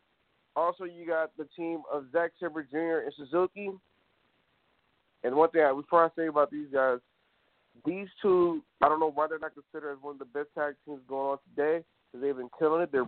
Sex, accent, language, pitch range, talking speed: male, American, English, 145-175 Hz, 200 wpm